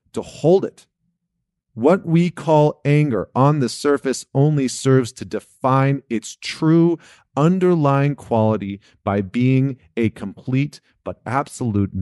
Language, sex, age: English, male, 40-59